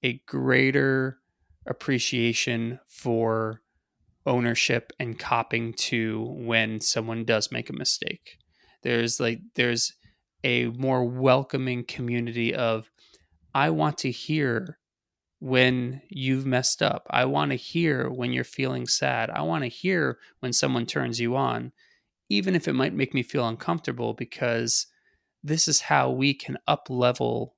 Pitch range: 115-130 Hz